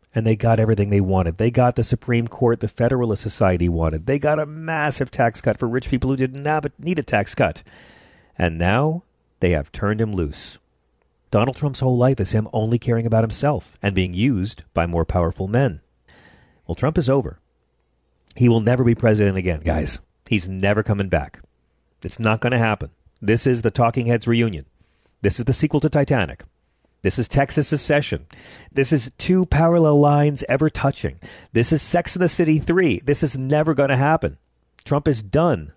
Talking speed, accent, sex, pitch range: 190 wpm, American, male, 90-140 Hz